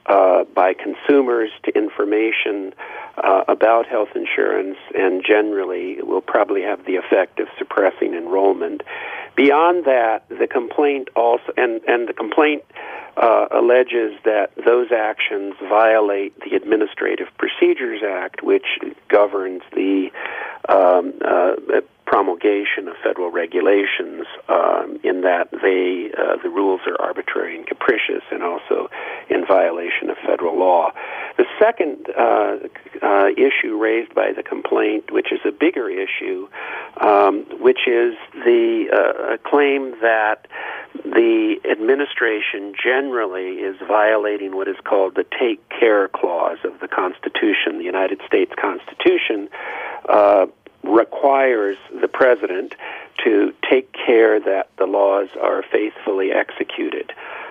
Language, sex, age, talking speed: English, male, 50-69, 125 wpm